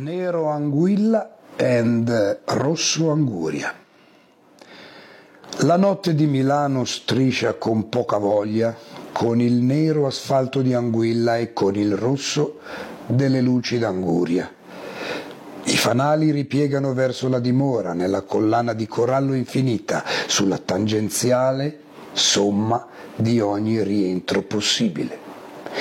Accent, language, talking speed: native, Italian, 100 wpm